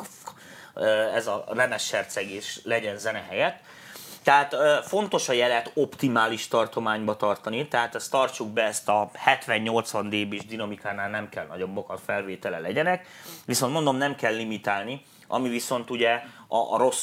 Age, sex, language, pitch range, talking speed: 30-49, male, Hungarian, 105-135 Hz, 135 wpm